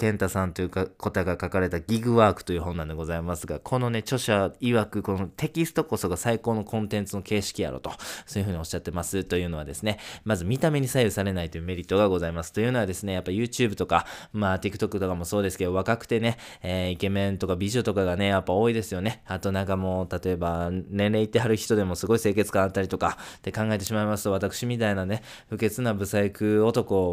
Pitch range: 90-115 Hz